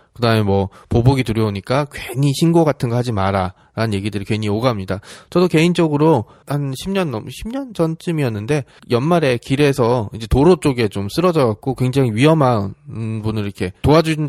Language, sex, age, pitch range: Korean, male, 20-39, 105-145 Hz